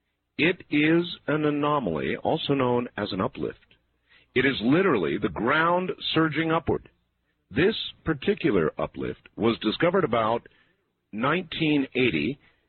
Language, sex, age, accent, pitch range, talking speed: English, male, 50-69, American, 95-150 Hz, 110 wpm